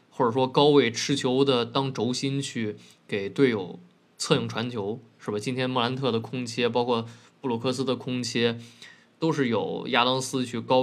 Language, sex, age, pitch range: Chinese, male, 20-39, 125-155 Hz